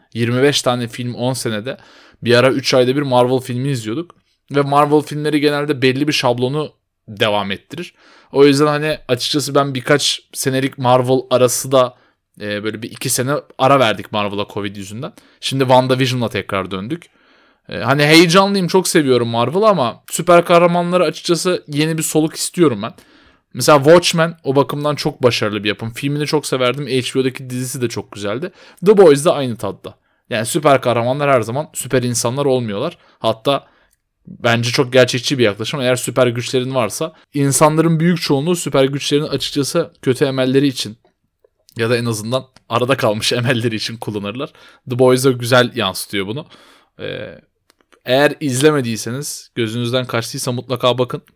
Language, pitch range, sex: Turkish, 120-150 Hz, male